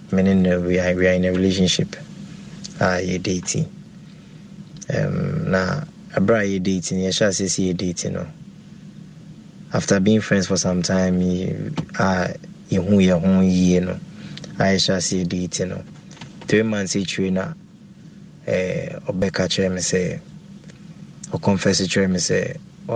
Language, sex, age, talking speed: English, male, 20-39, 135 wpm